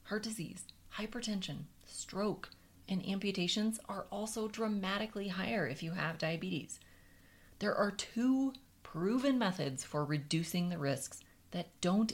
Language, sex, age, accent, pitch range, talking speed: English, female, 30-49, American, 155-220 Hz, 125 wpm